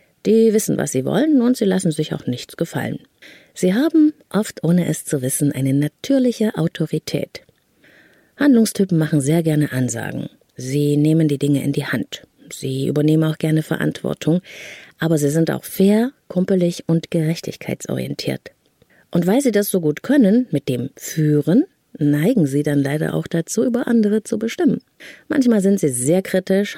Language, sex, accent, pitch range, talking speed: German, female, German, 150-205 Hz, 160 wpm